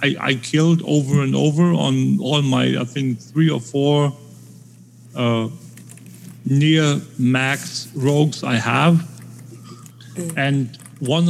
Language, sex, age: English, male, 50-69